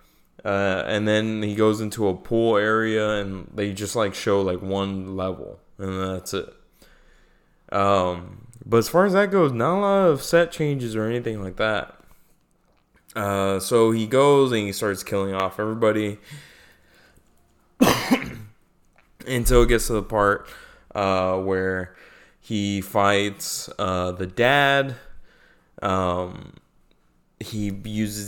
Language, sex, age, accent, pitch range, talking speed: English, male, 20-39, American, 100-125 Hz, 135 wpm